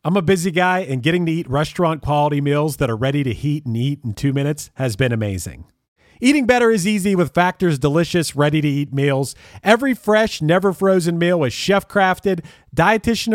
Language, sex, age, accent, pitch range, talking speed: English, male, 40-59, American, 140-195 Hz, 200 wpm